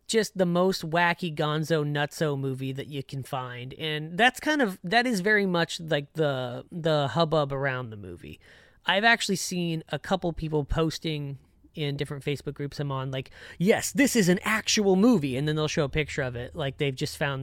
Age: 30-49